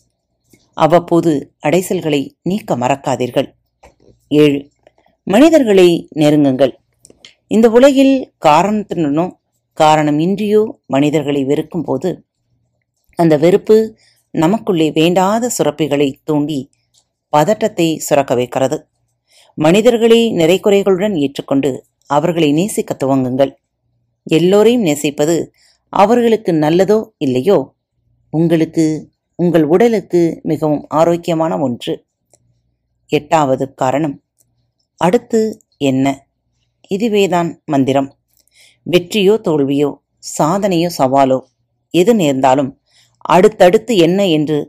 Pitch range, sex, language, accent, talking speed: 135-185 Hz, female, Tamil, native, 75 wpm